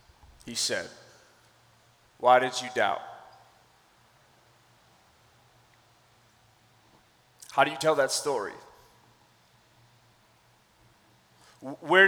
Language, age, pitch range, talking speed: English, 30-49, 130-165 Hz, 65 wpm